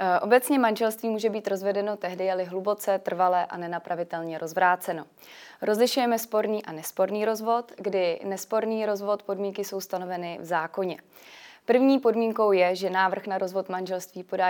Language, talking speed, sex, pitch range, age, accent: Czech, 140 wpm, female, 180-205 Hz, 20-39, native